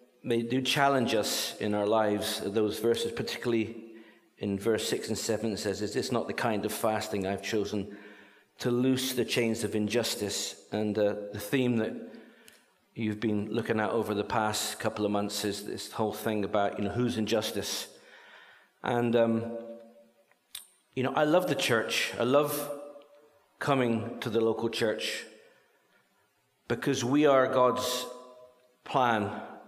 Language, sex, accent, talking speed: English, male, British, 155 wpm